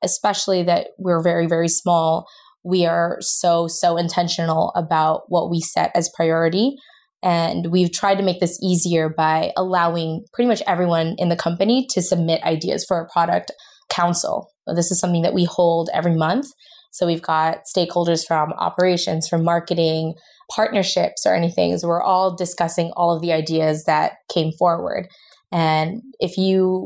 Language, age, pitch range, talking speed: English, 20-39, 165-190 Hz, 160 wpm